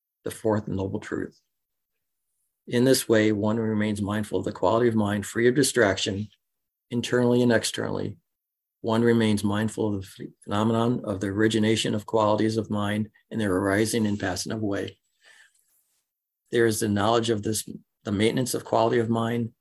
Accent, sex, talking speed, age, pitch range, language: American, male, 155 wpm, 40-59, 105-115 Hz, English